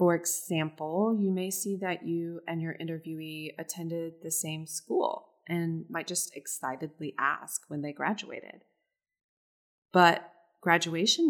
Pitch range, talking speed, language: 160-210 Hz, 125 wpm, English